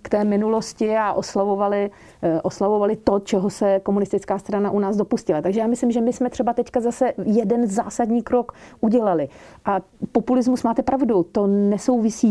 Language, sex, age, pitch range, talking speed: Slovak, female, 40-59, 190-220 Hz, 160 wpm